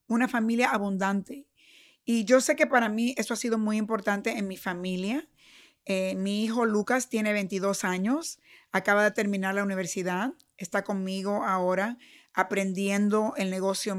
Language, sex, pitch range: English, female, 200-245 Hz